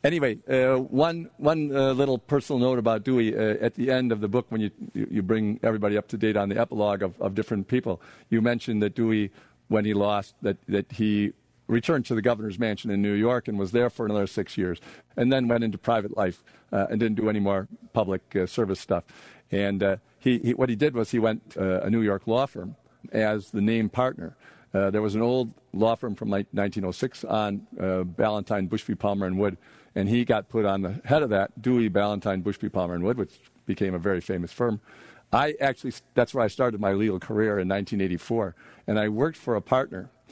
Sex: male